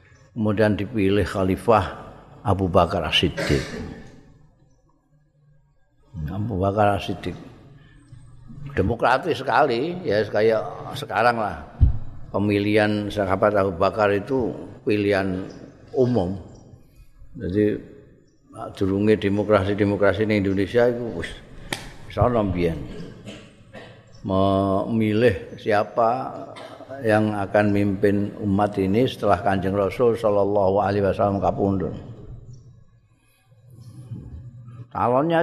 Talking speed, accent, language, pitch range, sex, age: 75 wpm, native, Indonesian, 100-125 Hz, male, 50-69